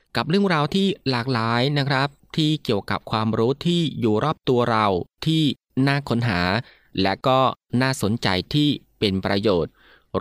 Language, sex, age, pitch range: Thai, male, 20-39, 100-135 Hz